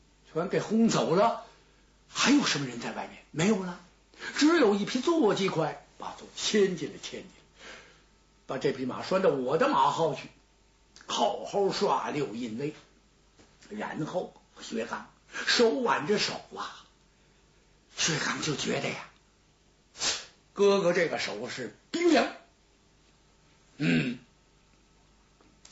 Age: 60-79